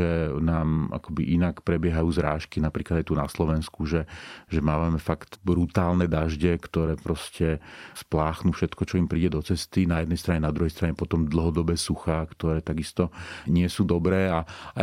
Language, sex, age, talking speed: Slovak, male, 40-59, 170 wpm